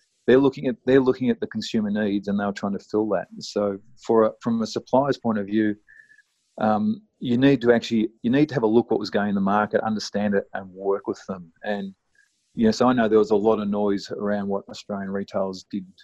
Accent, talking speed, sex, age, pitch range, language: Australian, 245 wpm, male, 40-59, 100-130 Hz, English